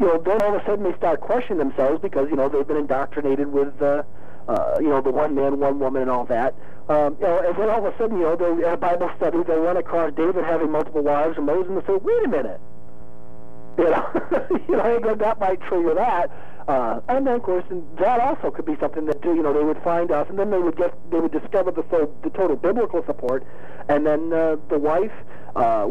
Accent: American